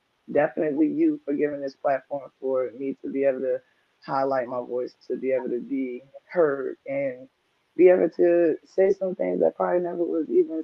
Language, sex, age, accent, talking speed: English, female, 20-39, American, 185 wpm